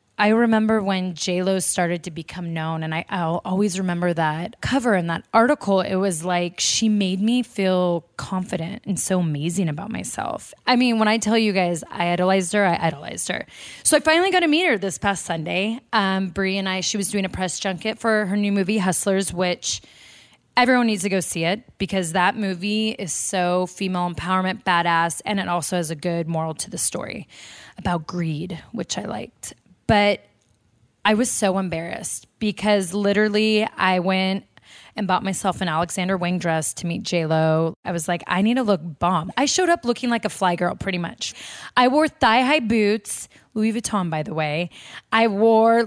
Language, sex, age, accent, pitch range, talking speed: English, female, 20-39, American, 175-225 Hz, 190 wpm